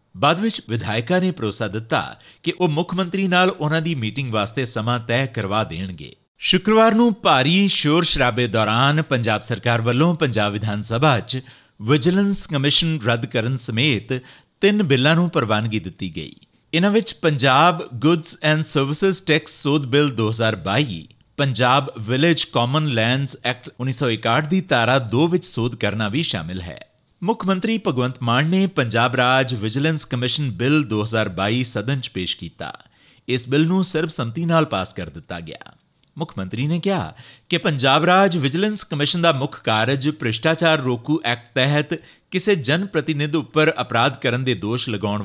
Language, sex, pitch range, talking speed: Punjabi, male, 115-160 Hz, 135 wpm